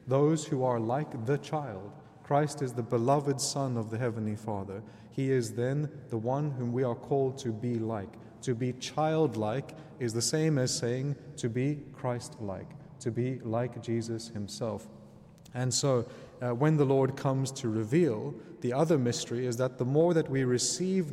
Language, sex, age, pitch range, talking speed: English, male, 30-49, 120-145 Hz, 175 wpm